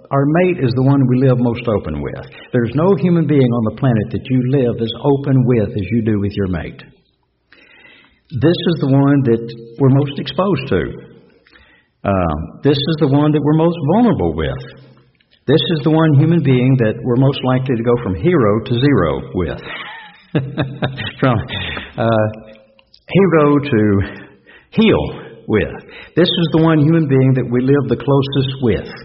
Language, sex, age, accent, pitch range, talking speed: English, male, 60-79, American, 115-155 Hz, 170 wpm